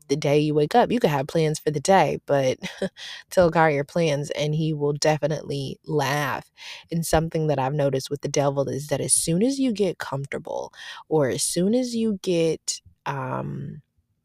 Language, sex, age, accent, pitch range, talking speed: English, female, 20-39, American, 140-170 Hz, 190 wpm